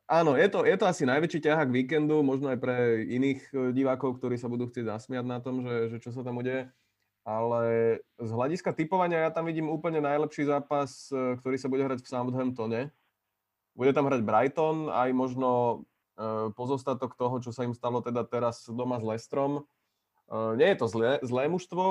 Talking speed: 185 wpm